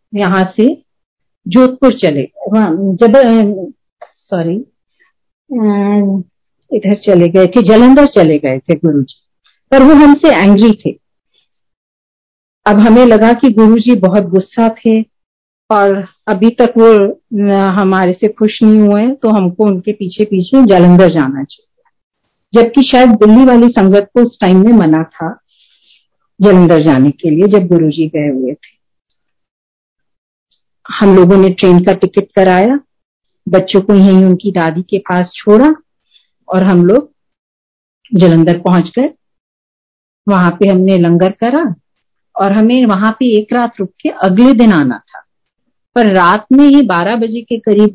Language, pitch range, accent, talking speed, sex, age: Hindi, 180-230 Hz, native, 145 wpm, female, 50-69